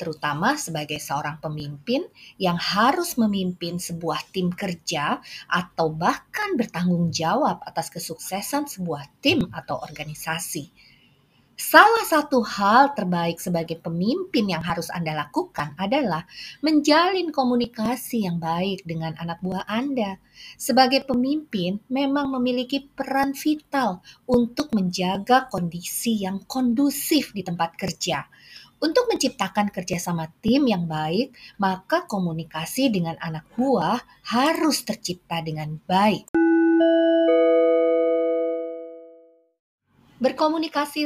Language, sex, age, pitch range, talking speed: Indonesian, female, 30-49, 165-255 Hz, 100 wpm